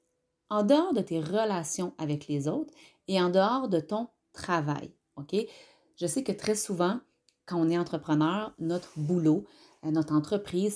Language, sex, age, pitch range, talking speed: French, female, 30-49, 155-205 Hz, 150 wpm